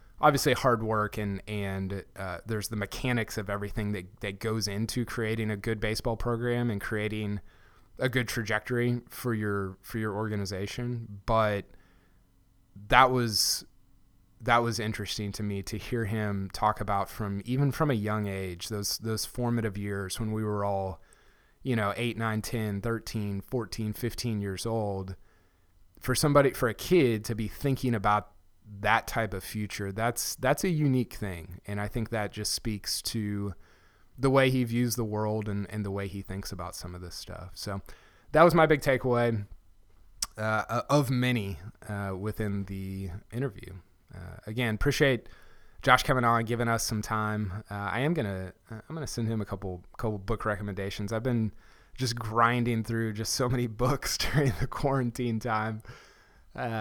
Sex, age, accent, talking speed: male, 20-39, American, 170 wpm